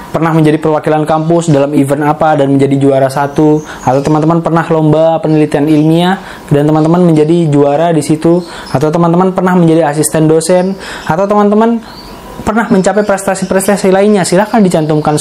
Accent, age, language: native, 20-39, Indonesian